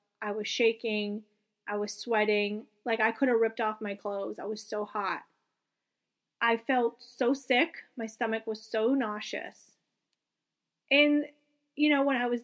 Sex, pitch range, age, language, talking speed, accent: female, 225-275 Hz, 30-49, English, 160 wpm, American